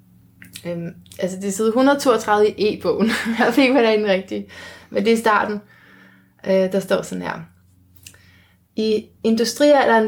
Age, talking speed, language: 20-39, 145 wpm, Danish